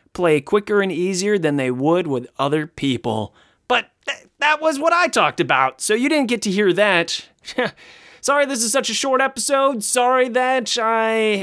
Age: 30-49